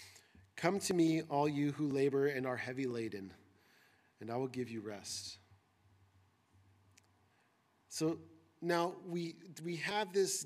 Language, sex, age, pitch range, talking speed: English, male, 40-59, 135-175 Hz, 130 wpm